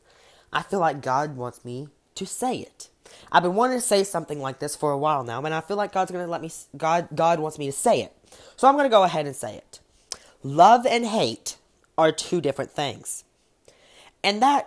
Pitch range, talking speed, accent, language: 140-185 Hz, 225 wpm, American, English